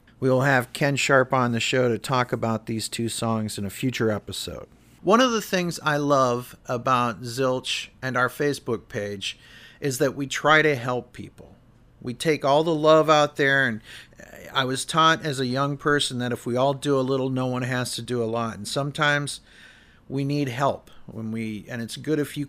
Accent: American